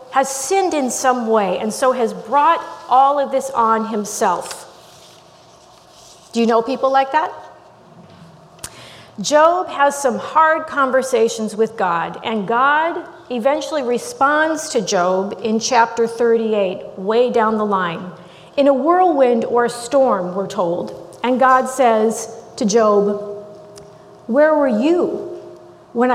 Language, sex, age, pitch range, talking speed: English, female, 40-59, 210-280 Hz, 130 wpm